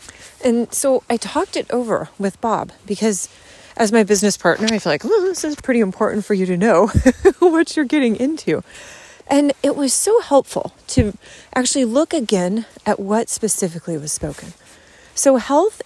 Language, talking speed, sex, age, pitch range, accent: English, 170 wpm, female, 30-49, 185-245 Hz, American